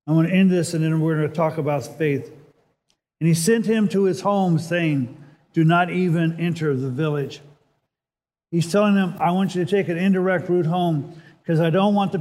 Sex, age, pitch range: male, 50-69, 150-175 Hz